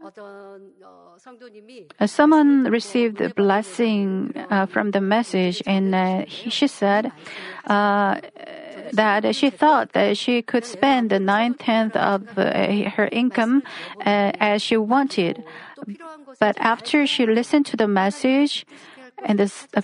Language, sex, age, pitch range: Korean, female, 40-59, 195-245 Hz